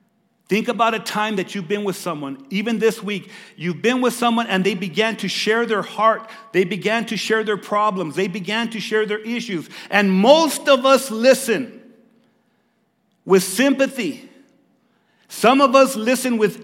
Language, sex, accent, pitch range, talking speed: English, male, American, 175-230 Hz, 170 wpm